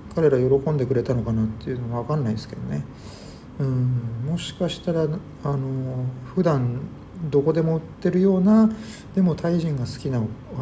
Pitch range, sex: 120-165 Hz, male